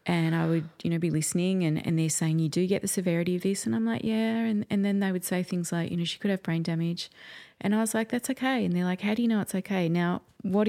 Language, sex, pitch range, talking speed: English, female, 155-190 Hz, 305 wpm